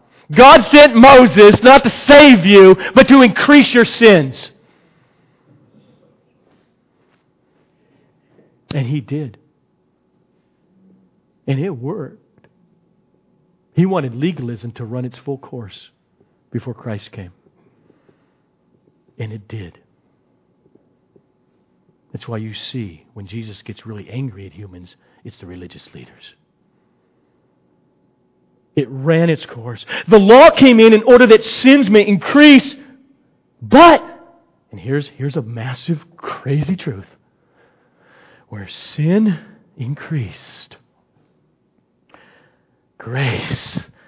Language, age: English, 50-69